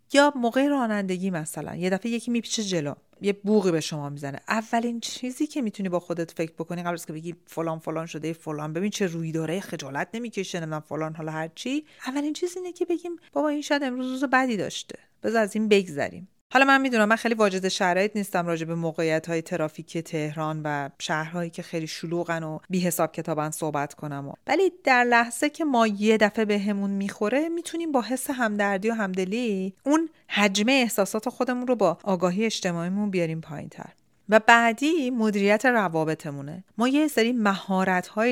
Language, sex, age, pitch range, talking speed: Persian, female, 40-59, 165-230 Hz, 185 wpm